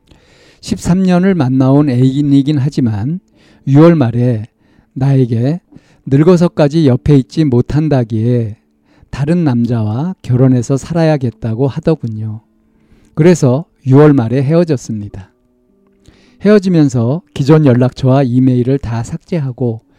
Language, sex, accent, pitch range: Korean, male, native, 115-150 Hz